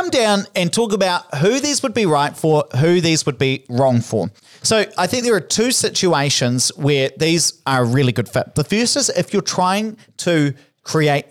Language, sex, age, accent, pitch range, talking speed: English, male, 40-59, Australian, 130-185 Hz, 200 wpm